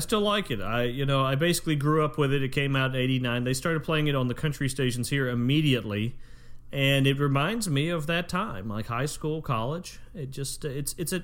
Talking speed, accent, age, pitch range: 235 wpm, American, 40-59, 120-165 Hz